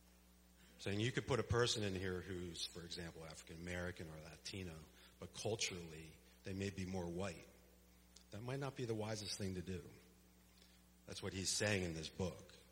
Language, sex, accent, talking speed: English, male, American, 175 wpm